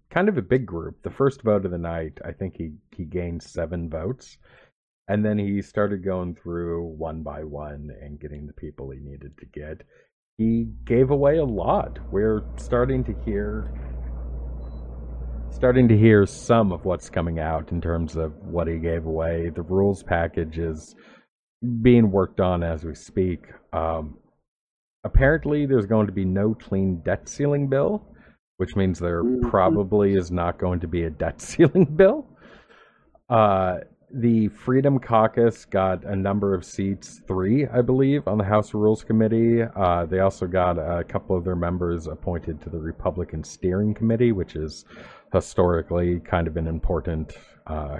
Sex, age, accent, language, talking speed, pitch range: male, 40-59, American, English, 165 wpm, 80-105 Hz